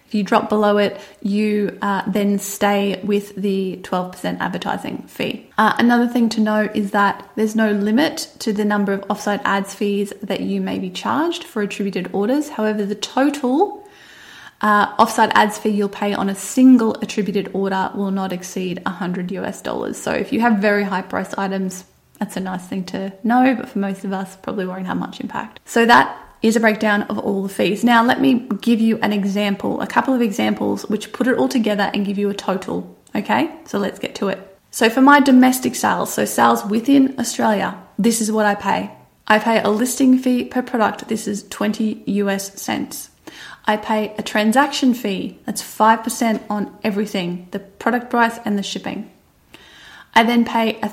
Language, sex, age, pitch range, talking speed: English, female, 20-39, 200-235 Hz, 195 wpm